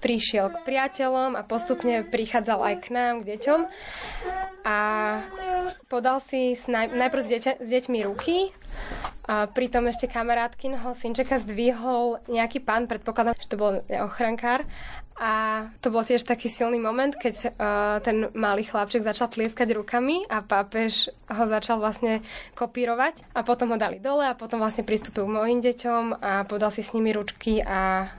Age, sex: 10-29, female